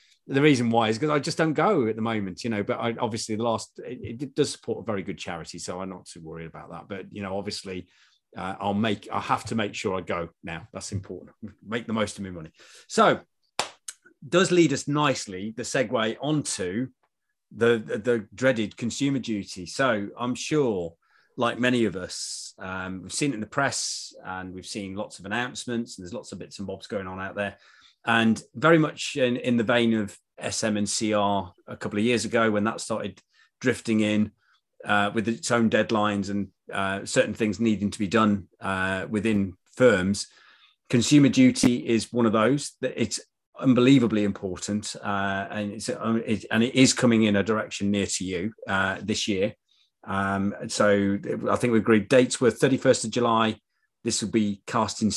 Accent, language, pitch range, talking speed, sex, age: British, English, 100-120 Hz, 200 wpm, male, 30-49